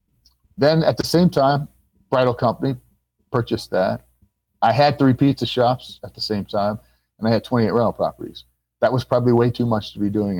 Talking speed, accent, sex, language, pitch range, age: 190 wpm, American, male, English, 95-130 Hz, 40-59